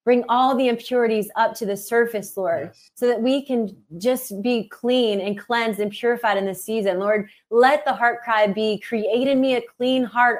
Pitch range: 210-255 Hz